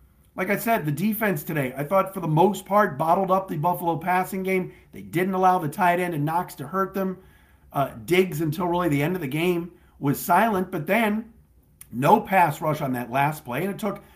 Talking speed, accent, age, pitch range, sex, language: 220 wpm, American, 50-69, 130-180 Hz, male, English